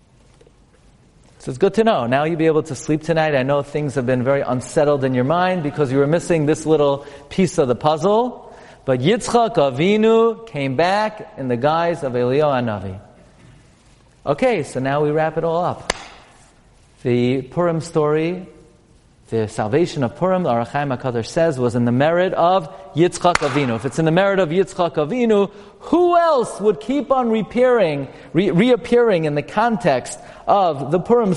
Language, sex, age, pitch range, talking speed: English, male, 40-59, 145-195 Hz, 170 wpm